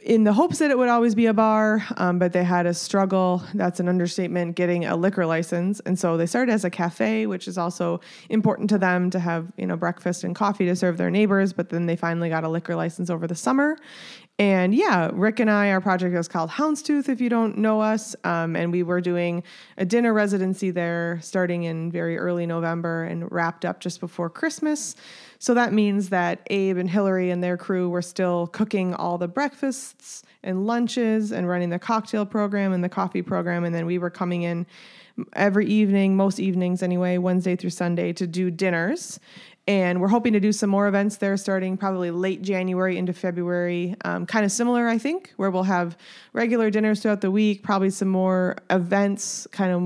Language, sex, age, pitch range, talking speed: English, female, 20-39, 175-210 Hz, 205 wpm